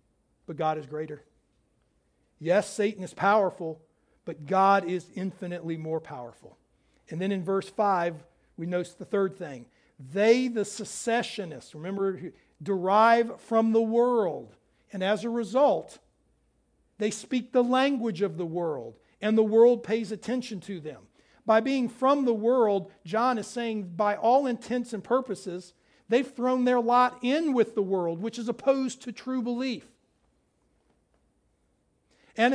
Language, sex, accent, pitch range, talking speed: English, male, American, 180-240 Hz, 145 wpm